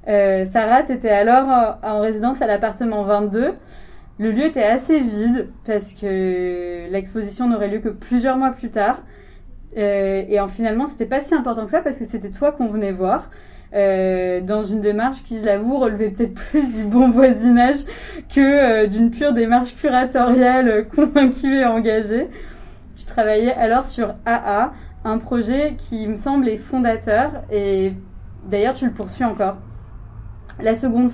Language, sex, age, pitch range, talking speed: French, female, 20-39, 210-255 Hz, 160 wpm